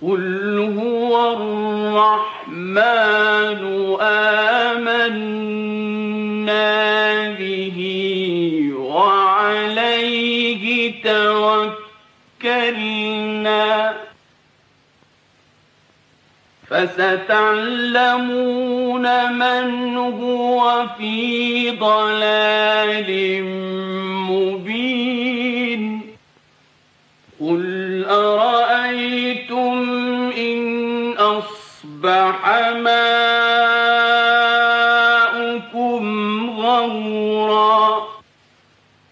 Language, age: Persian, 40-59